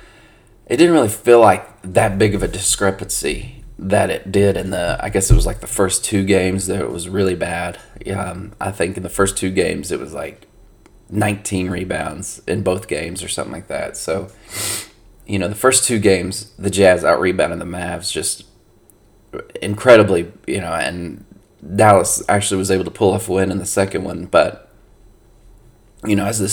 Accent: American